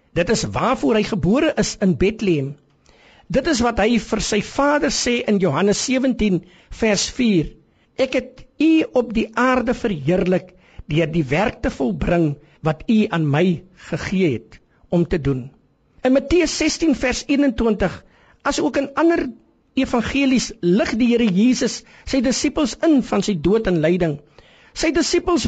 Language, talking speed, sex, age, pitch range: French, 155 wpm, male, 50-69, 190-265 Hz